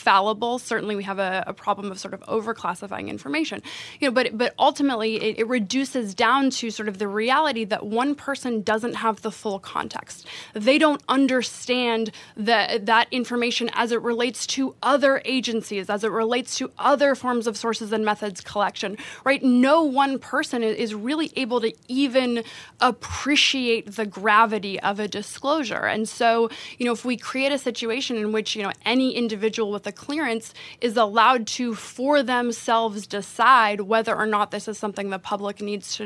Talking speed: 170 wpm